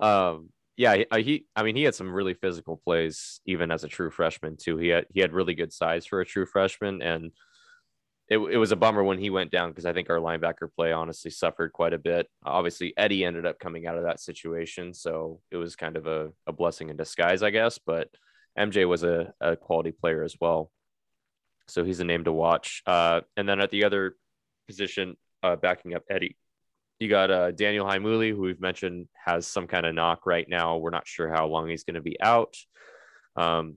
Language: English